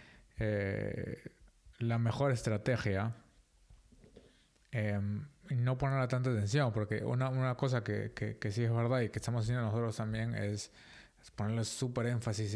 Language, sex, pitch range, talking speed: Spanish, male, 105-125 Hz, 150 wpm